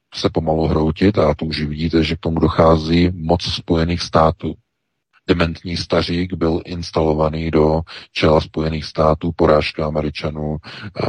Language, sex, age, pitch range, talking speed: Czech, male, 40-59, 80-95 Hz, 130 wpm